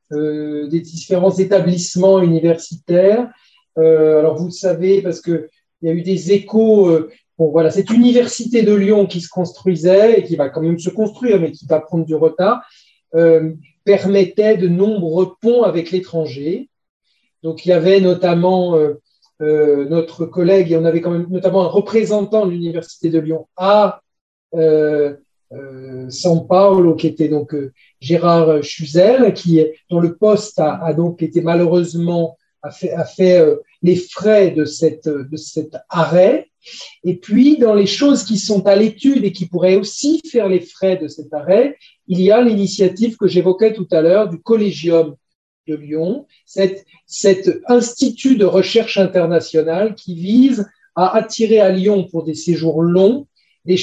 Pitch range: 165-205 Hz